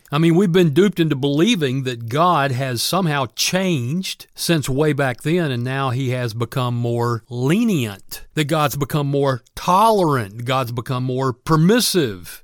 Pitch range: 125-170 Hz